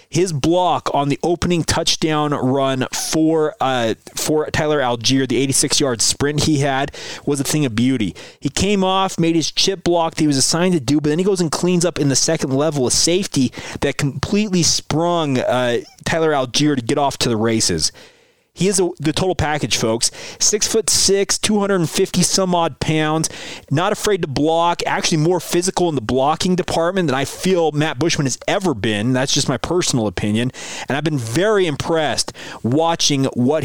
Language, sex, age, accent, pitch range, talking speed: English, male, 30-49, American, 130-165 Hz, 185 wpm